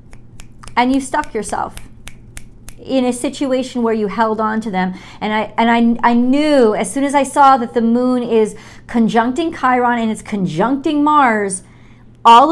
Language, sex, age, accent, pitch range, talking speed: English, female, 40-59, American, 215-265 Hz, 160 wpm